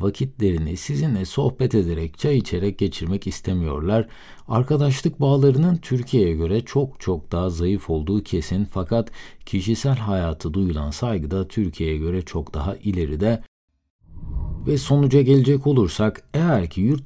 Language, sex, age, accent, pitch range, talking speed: Turkish, male, 50-69, native, 95-140 Hz, 125 wpm